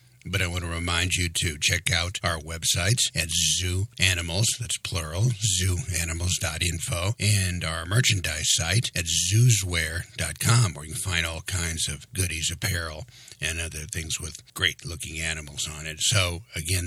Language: English